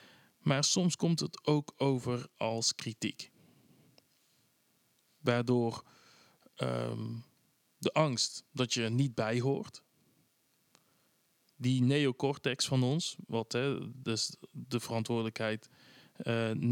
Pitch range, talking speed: 115-135 Hz, 90 wpm